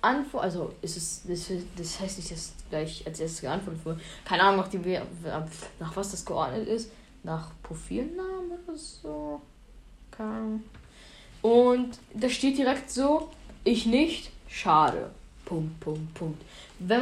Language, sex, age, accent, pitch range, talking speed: German, female, 10-29, German, 185-255 Hz, 125 wpm